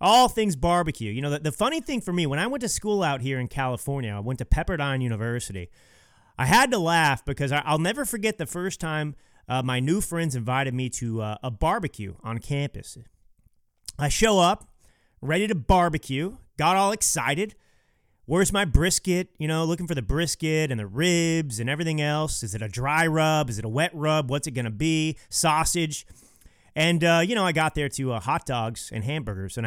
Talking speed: 205 wpm